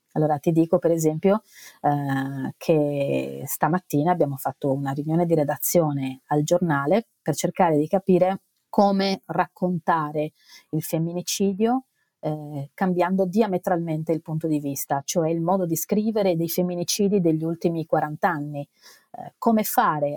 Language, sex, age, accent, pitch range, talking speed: Italian, female, 30-49, native, 150-190 Hz, 135 wpm